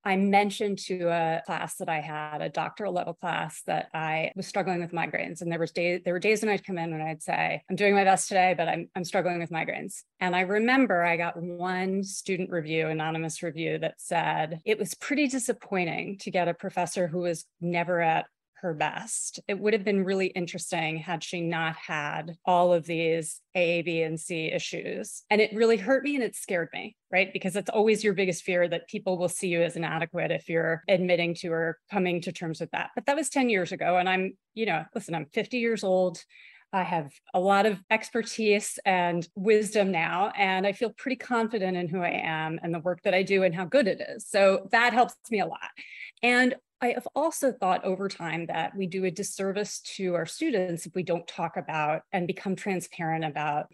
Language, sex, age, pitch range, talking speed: English, female, 30-49, 170-210 Hz, 215 wpm